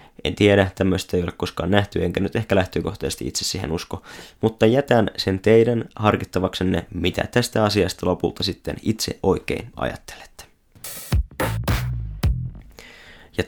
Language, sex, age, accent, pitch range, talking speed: Finnish, male, 20-39, native, 90-105 Hz, 125 wpm